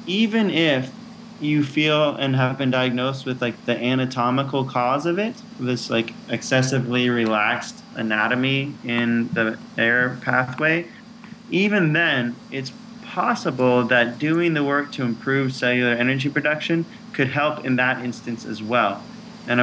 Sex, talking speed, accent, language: male, 140 wpm, American, English